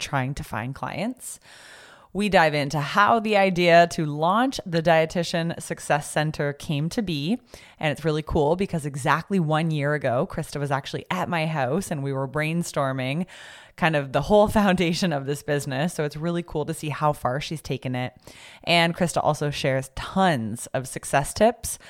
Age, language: 20-39, English